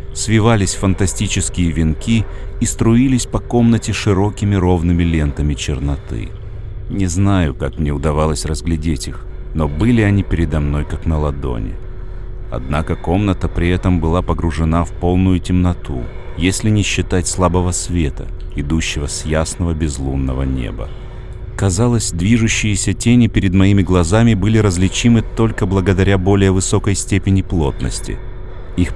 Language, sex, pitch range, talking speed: Russian, male, 80-100 Hz, 125 wpm